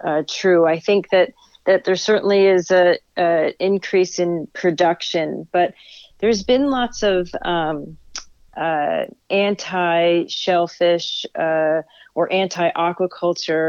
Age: 40-59